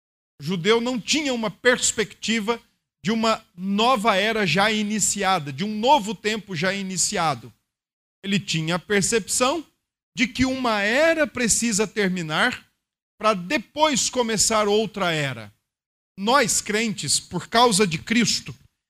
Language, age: Portuguese, 50-69